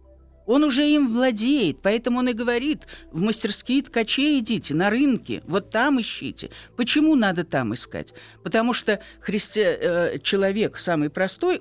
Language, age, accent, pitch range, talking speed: Russian, 50-69, native, 170-255 Hz, 135 wpm